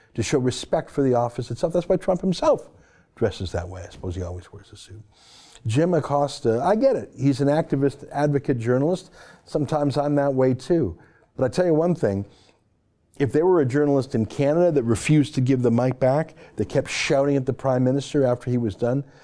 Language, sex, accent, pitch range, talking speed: English, male, American, 100-145 Hz, 210 wpm